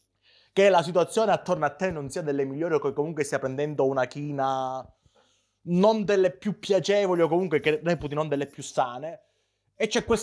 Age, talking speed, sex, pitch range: 20-39, 190 wpm, male, 125-160 Hz